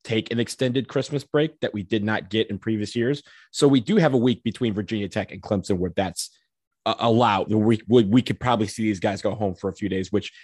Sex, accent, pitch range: male, American, 105-125 Hz